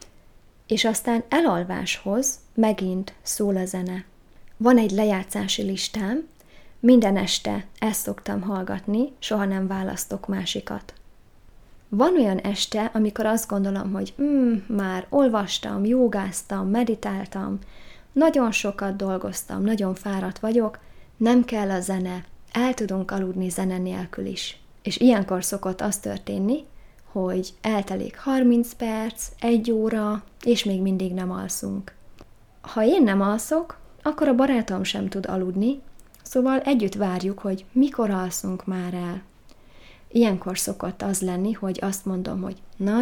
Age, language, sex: 20-39, Hungarian, female